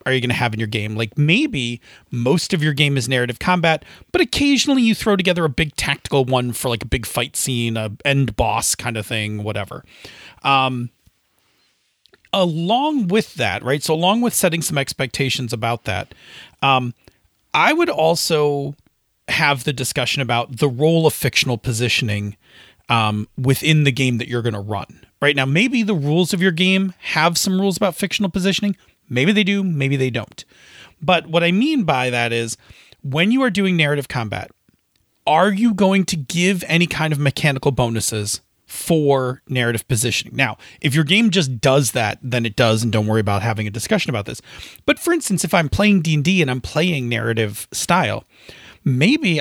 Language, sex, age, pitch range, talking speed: English, male, 40-59, 120-175 Hz, 185 wpm